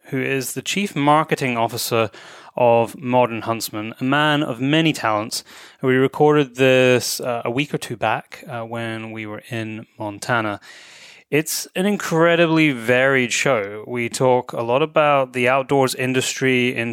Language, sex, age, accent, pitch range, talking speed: English, male, 20-39, British, 110-130 Hz, 150 wpm